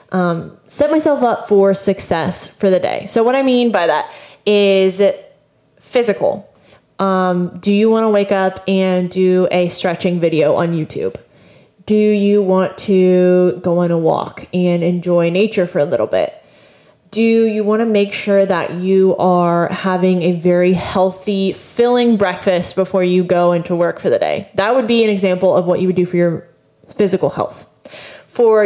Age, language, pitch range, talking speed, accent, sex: 20-39, English, 180-215 Hz, 175 wpm, American, female